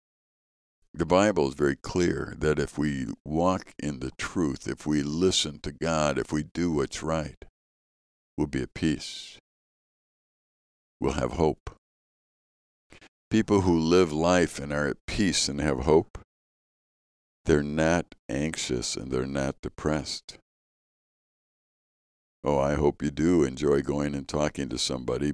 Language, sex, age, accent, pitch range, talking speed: English, male, 60-79, American, 65-80 Hz, 135 wpm